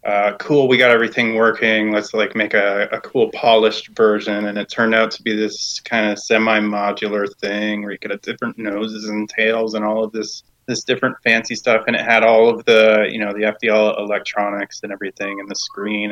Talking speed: 210 wpm